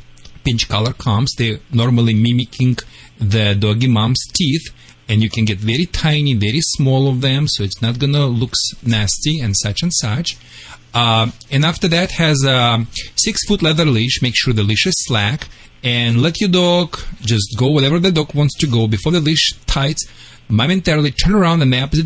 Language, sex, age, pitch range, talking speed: English, male, 40-59, 115-155 Hz, 180 wpm